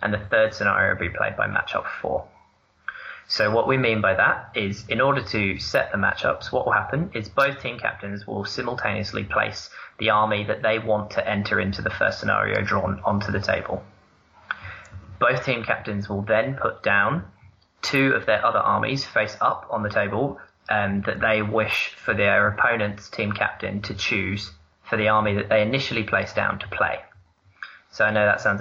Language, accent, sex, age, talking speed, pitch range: English, British, male, 20-39, 190 wpm, 95-110 Hz